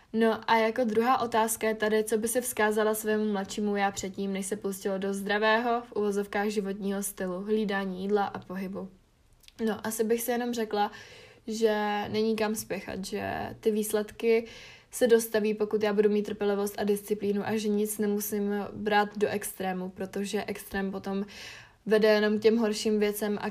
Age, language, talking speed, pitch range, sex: 20-39, Czech, 170 wpm, 200-220 Hz, female